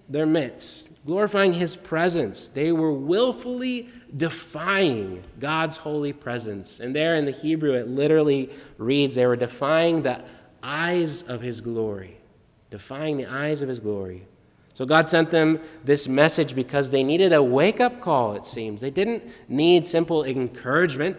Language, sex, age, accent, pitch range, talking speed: English, male, 20-39, American, 125-165 Hz, 150 wpm